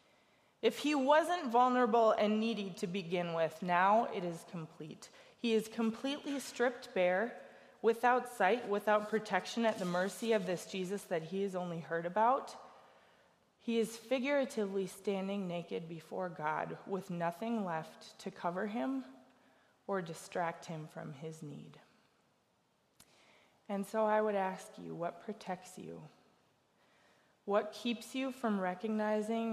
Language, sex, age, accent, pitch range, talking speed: English, female, 20-39, American, 175-225 Hz, 135 wpm